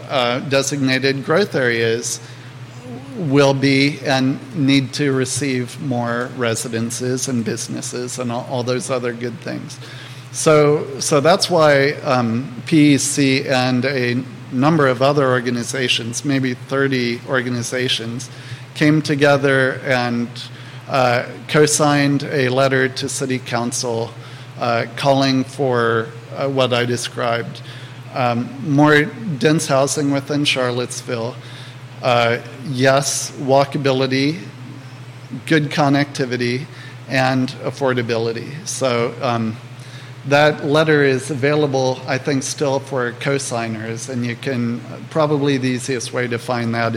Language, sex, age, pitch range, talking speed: English, male, 40-59, 125-140 Hz, 110 wpm